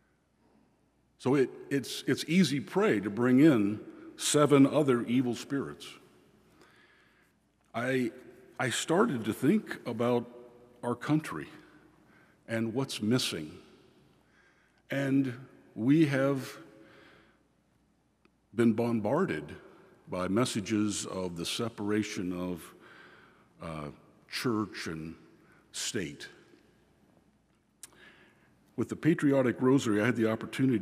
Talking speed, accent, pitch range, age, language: 90 wpm, American, 105-140 Hz, 60-79, English